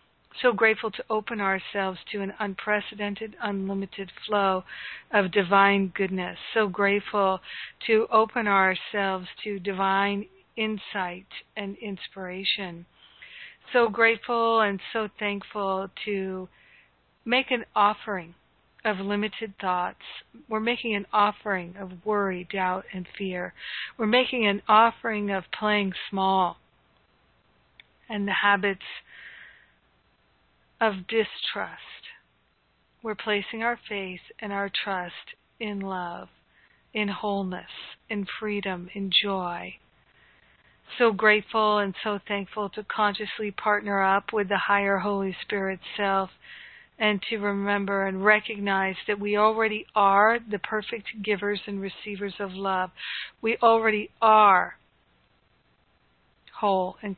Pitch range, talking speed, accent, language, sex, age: 190-215 Hz, 110 wpm, American, English, female, 50-69